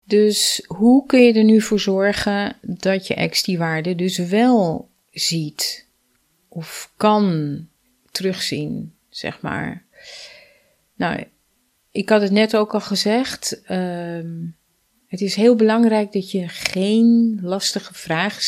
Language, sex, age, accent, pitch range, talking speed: Dutch, female, 30-49, Dutch, 170-215 Hz, 125 wpm